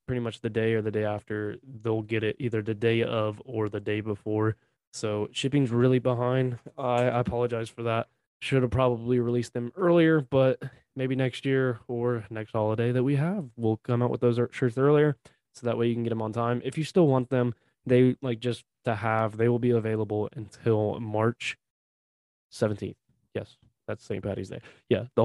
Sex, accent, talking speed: male, American, 200 wpm